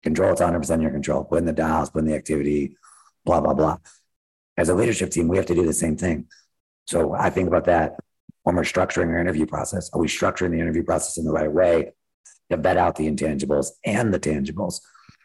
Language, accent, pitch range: English, American, 80-95 Hz